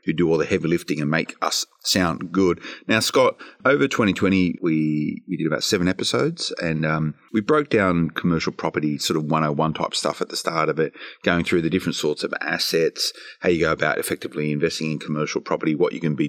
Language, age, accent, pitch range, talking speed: English, 30-49, Australian, 75-90 Hz, 215 wpm